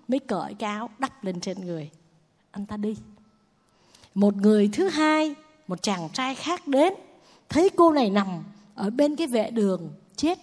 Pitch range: 210-315 Hz